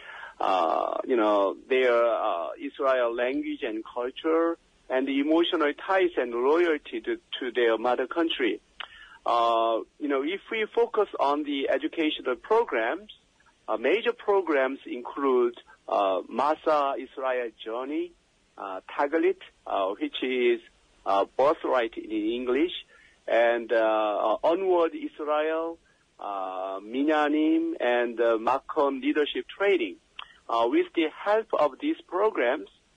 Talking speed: 120 wpm